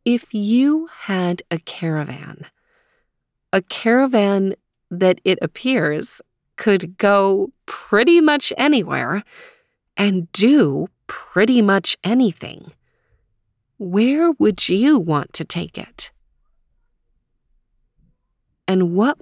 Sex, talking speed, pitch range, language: female, 90 wpm, 175-240 Hz, English